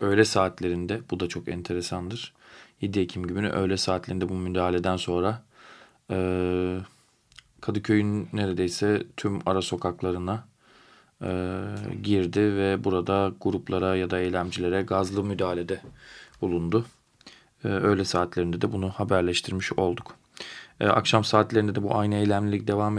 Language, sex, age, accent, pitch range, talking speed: Turkish, male, 40-59, native, 95-110 Hz, 120 wpm